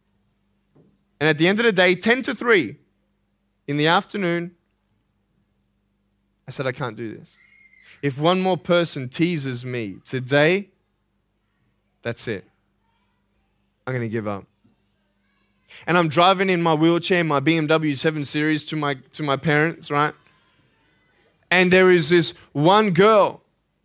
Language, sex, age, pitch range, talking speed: English, male, 20-39, 125-175 Hz, 140 wpm